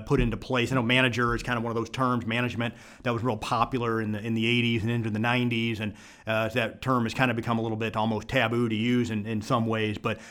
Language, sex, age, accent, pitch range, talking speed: English, male, 30-49, American, 115-130 Hz, 275 wpm